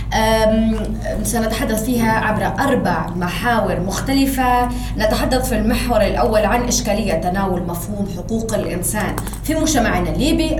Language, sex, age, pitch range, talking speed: Arabic, female, 20-39, 195-245 Hz, 115 wpm